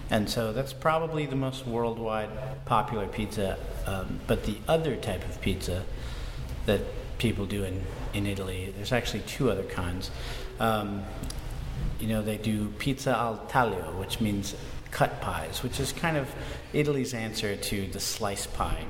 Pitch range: 110-125 Hz